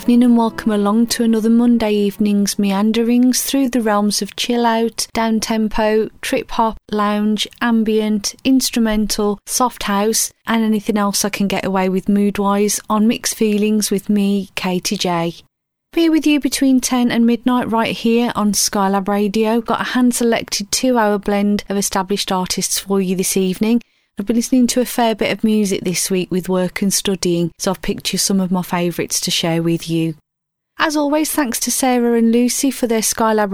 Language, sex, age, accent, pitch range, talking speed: English, female, 30-49, British, 200-235 Hz, 190 wpm